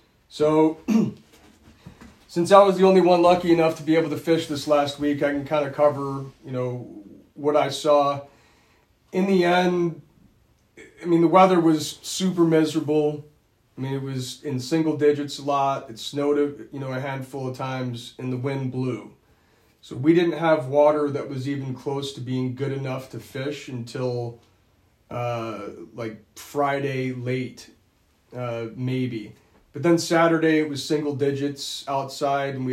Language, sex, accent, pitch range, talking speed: English, male, American, 125-150 Hz, 165 wpm